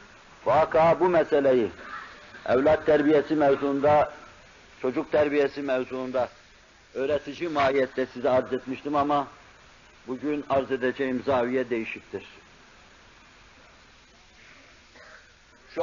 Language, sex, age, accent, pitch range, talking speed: Turkish, male, 60-79, native, 145-170 Hz, 80 wpm